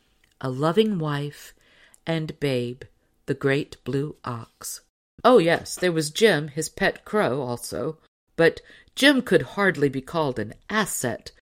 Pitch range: 135-190 Hz